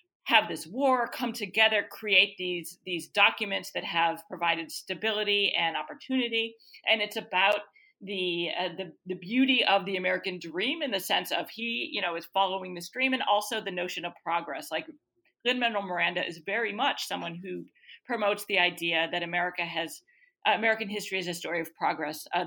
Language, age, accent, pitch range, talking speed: English, 40-59, American, 175-225 Hz, 180 wpm